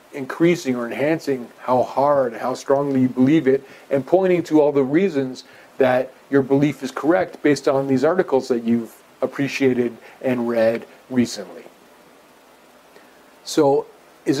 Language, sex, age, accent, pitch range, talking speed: English, male, 40-59, American, 125-145 Hz, 135 wpm